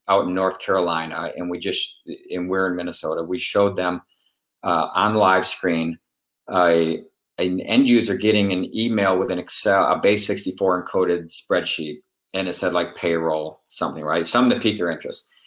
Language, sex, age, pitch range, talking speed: English, male, 50-69, 90-110 Hz, 175 wpm